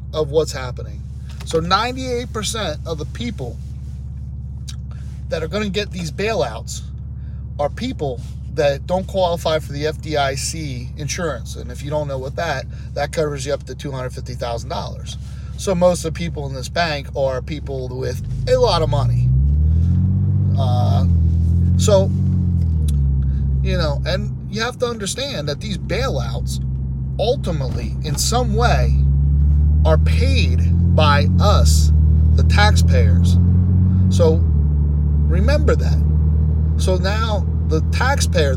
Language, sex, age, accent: English, male, 30-49, American